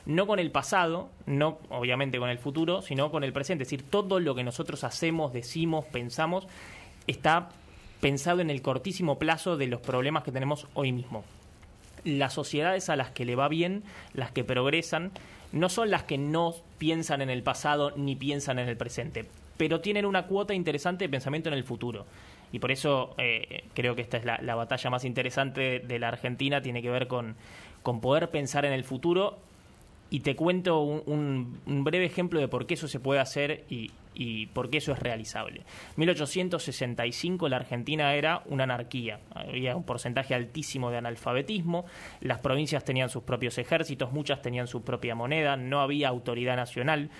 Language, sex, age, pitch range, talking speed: Spanish, male, 20-39, 125-155 Hz, 185 wpm